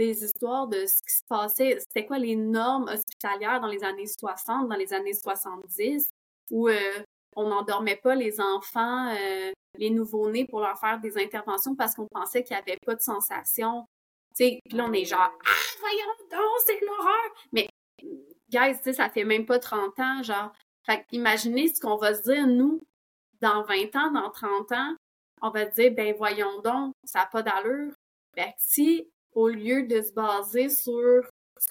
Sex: female